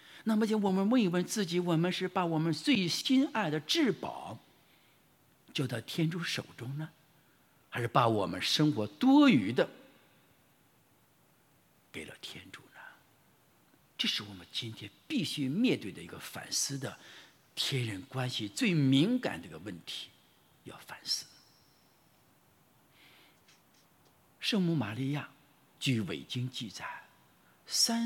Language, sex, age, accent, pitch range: English, male, 50-69, Chinese, 130-185 Hz